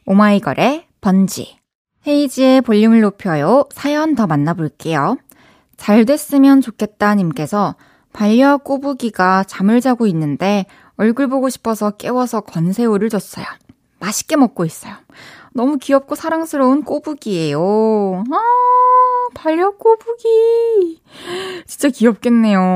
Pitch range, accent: 190-275 Hz, native